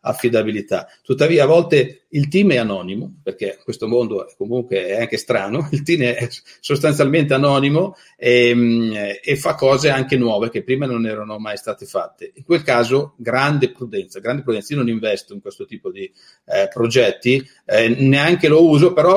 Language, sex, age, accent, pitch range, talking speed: Italian, male, 40-59, native, 120-150 Hz, 170 wpm